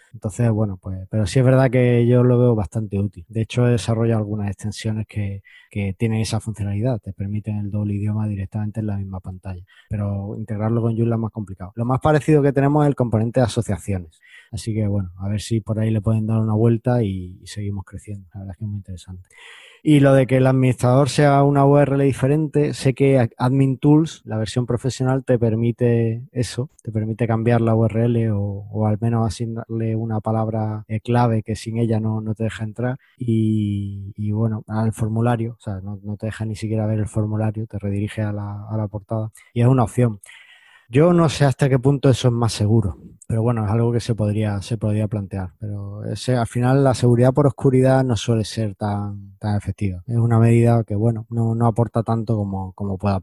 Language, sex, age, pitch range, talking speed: Spanish, male, 20-39, 105-120 Hz, 215 wpm